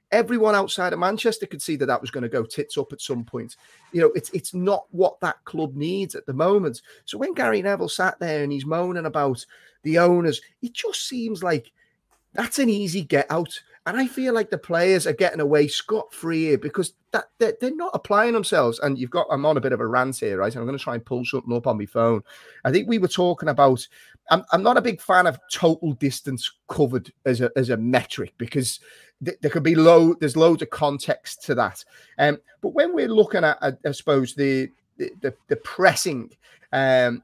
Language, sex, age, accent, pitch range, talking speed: English, male, 30-49, British, 135-205 Hz, 220 wpm